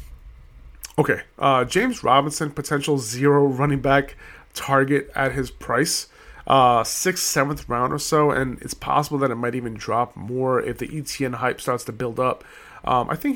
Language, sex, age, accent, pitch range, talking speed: English, male, 30-49, American, 120-145 Hz, 170 wpm